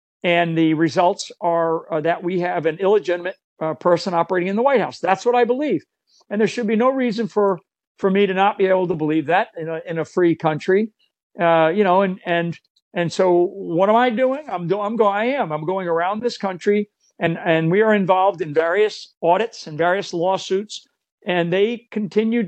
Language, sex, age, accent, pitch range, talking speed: English, male, 60-79, American, 155-190 Hz, 210 wpm